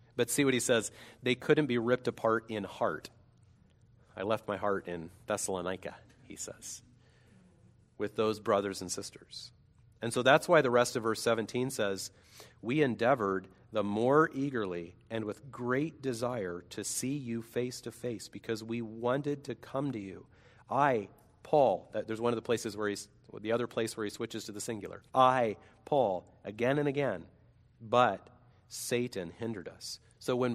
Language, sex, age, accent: English, male, 40-59, American